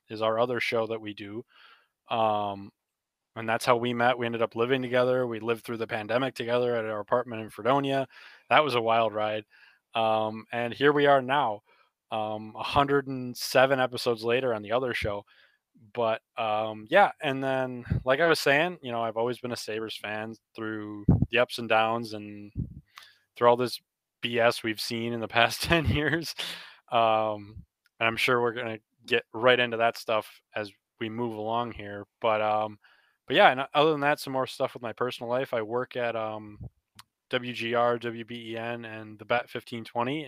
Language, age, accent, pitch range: English, 20-39, American, 110-125 Hz